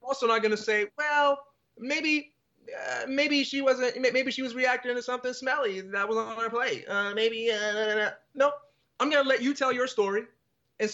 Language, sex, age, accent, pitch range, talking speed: English, male, 30-49, American, 155-230 Hz, 205 wpm